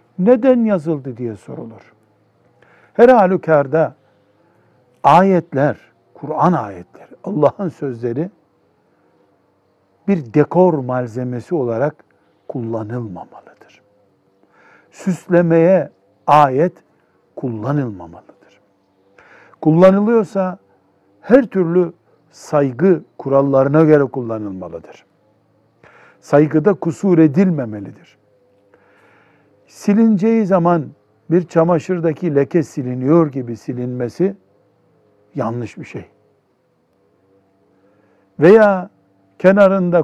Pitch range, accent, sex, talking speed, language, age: 115-175 Hz, native, male, 65 wpm, Turkish, 60-79